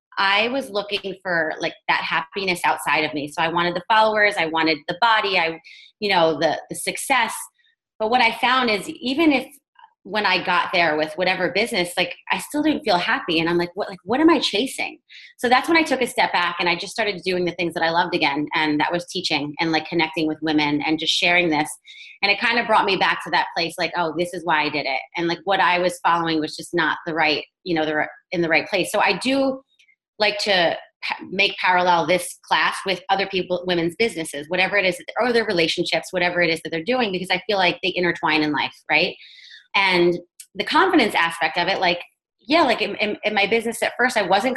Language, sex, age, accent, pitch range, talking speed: English, female, 30-49, American, 165-215 Hz, 235 wpm